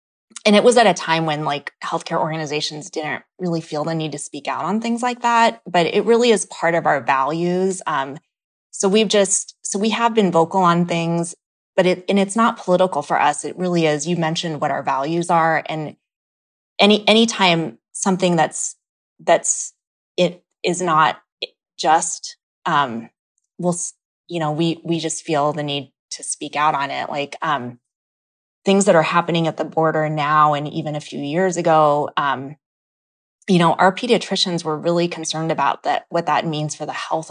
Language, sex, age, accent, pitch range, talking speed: English, female, 20-39, American, 150-185 Hz, 185 wpm